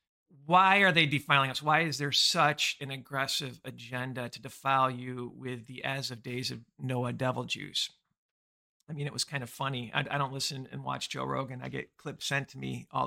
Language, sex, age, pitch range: English, male, 50-69, 130-145 Hz